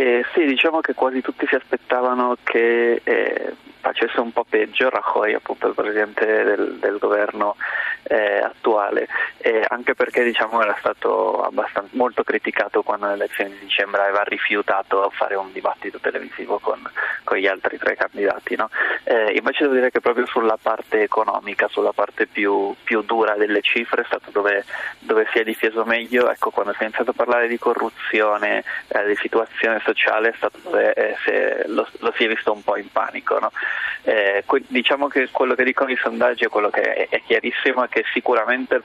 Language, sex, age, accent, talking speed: Italian, male, 20-39, native, 180 wpm